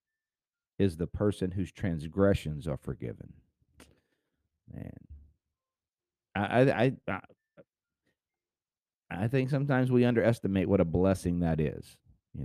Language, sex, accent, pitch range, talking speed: English, male, American, 85-120 Hz, 105 wpm